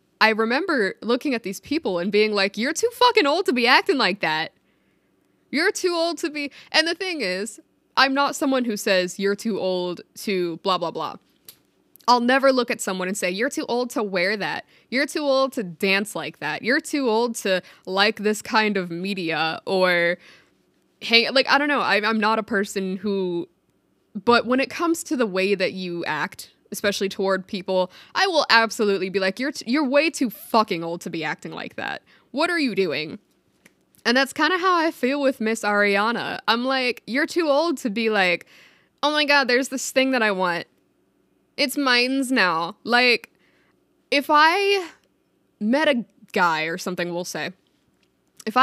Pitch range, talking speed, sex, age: 190-275 Hz, 190 wpm, female, 20-39